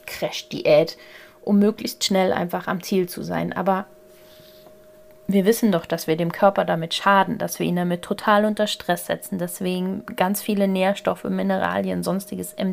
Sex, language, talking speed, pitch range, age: female, German, 155 wpm, 175-215 Hz, 30-49